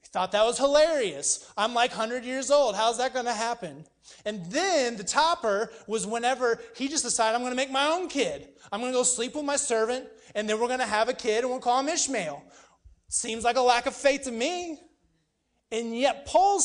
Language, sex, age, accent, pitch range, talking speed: English, male, 30-49, American, 185-250 Hz, 225 wpm